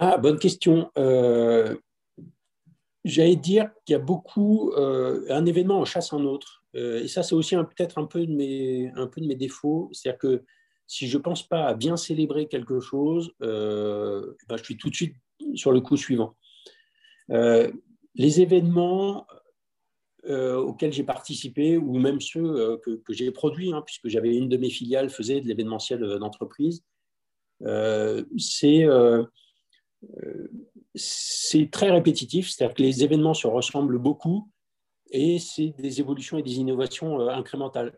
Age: 50-69